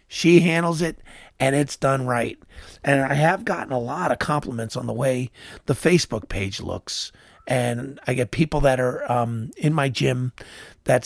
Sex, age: male, 50-69